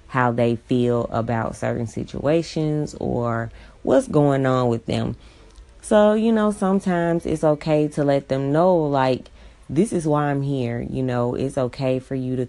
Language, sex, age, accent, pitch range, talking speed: English, female, 30-49, American, 115-150 Hz, 170 wpm